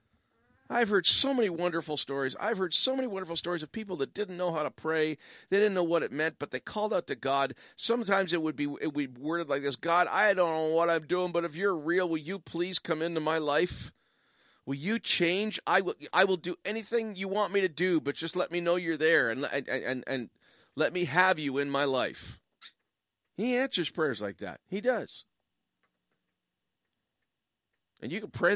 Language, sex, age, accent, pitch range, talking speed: English, male, 50-69, American, 135-185 Hz, 215 wpm